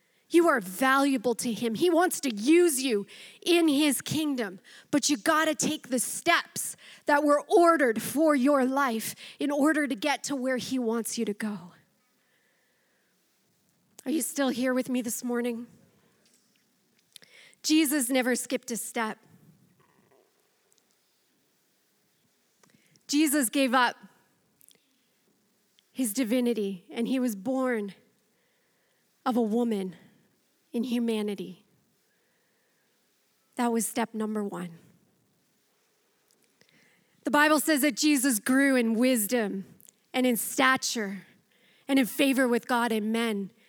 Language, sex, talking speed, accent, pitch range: English, female, 120 wpm, American, 220-275 Hz